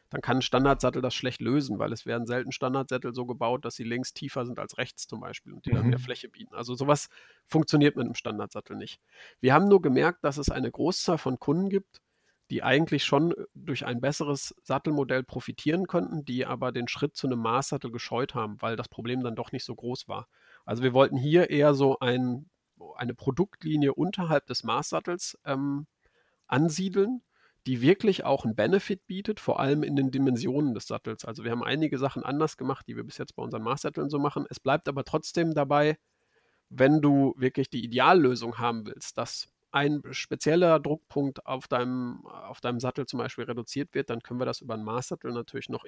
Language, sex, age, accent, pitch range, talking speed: German, male, 40-59, German, 125-150 Hz, 195 wpm